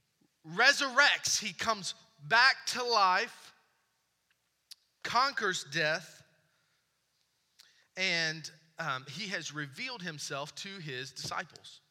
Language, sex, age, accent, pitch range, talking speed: English, male, 30-49, American, 140-205 Hz, 85 wpm